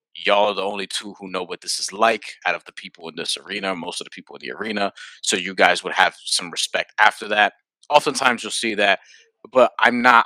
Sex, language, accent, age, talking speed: male, English, American, 20-39, 240 wpm